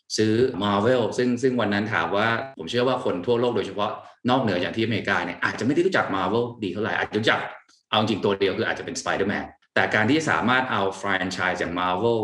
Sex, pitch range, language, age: male, 90-115 Hz, Thai, 20-39